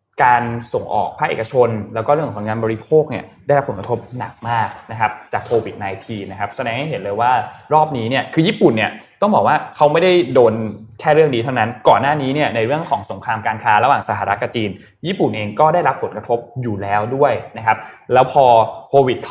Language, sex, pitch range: Thai, male, 110-140 Hz